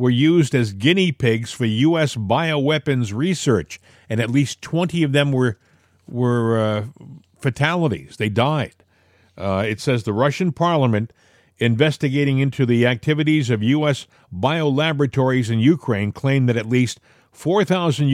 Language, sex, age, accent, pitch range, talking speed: English, male, 50-69, American, 105-150 Hz, 135 wpm